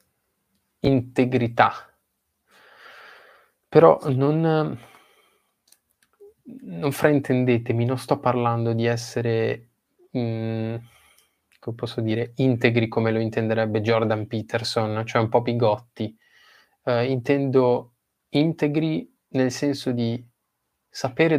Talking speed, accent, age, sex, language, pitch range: 85 wpm, native, 20-39, male, Italian, 115-130 Hz